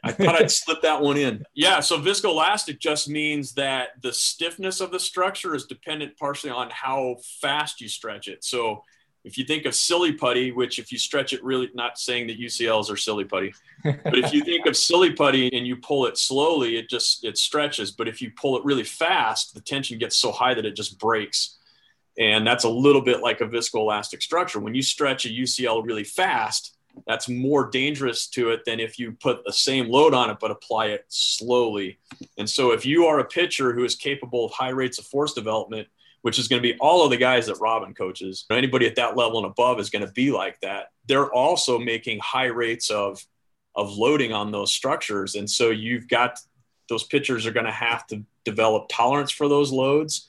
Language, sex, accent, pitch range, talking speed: English, male, American, 115-145 Hz, 215 wpm